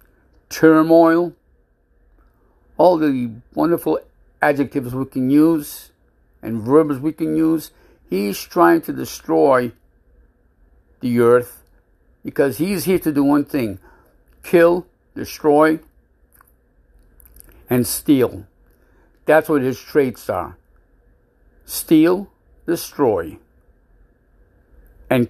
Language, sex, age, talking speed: English, male, 60-79, 90 wpm